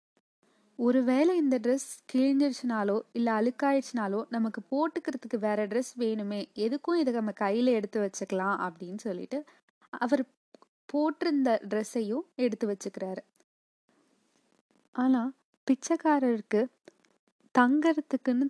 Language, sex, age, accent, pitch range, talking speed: Tamil, female, 20-39, native, 215-265 Hz, 80 wpm